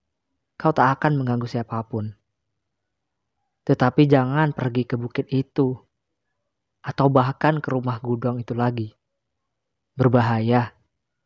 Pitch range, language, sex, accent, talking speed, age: 115-140 Hz, Indonesian, female, native, 100 wpm, 20-39